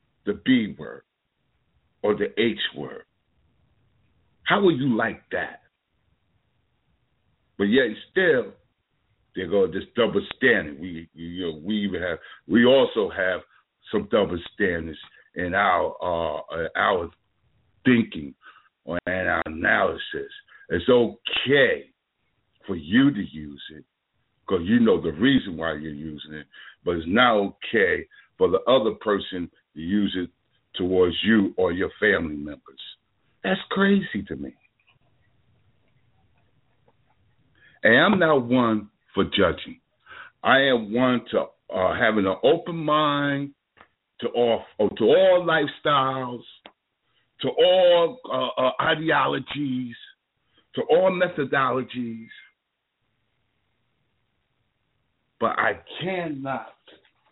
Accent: American